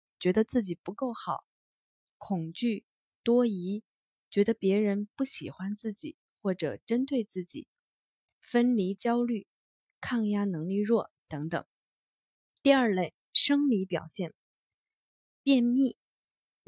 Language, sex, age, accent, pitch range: Chinese, female, 20-39, native, 180-245 Hz